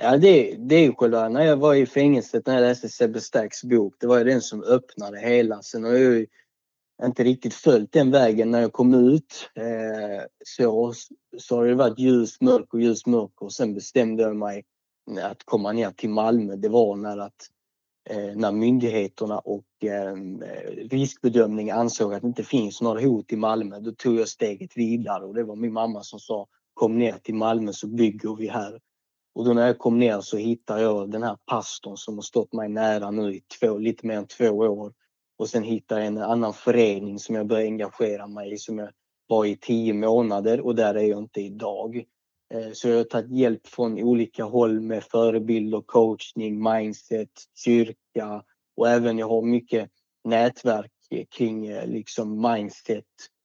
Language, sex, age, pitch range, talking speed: Swedish, male, 20-39, 105-120 Hz, 185 wpm